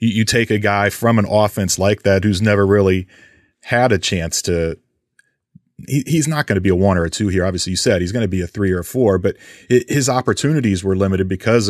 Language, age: English, 30-49